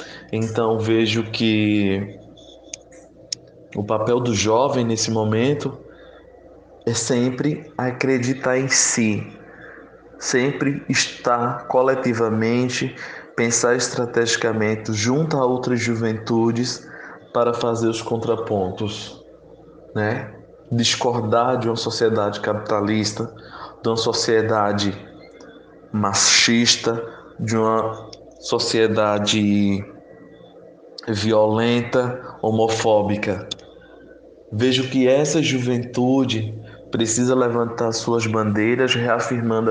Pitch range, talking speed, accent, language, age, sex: 110-120 Hz, 75 wpm, Brazilian, Portuguese, 20-39, male